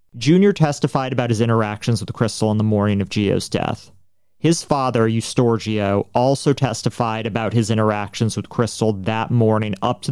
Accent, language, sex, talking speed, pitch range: American, English, male, 160 wpm, 105-130 Hz